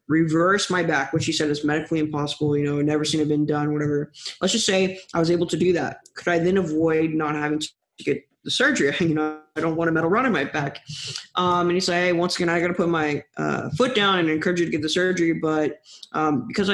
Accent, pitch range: American, 155-180 Hz